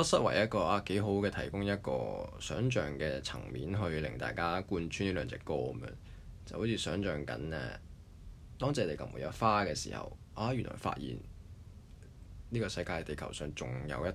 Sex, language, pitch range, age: male, Chinese, 80-105 Hz, 20-39